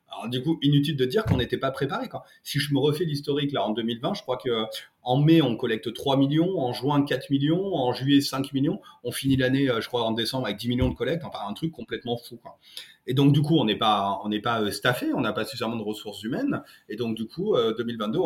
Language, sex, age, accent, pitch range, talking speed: French, male, 30-49, French, 120-150 Hz, 265 wpm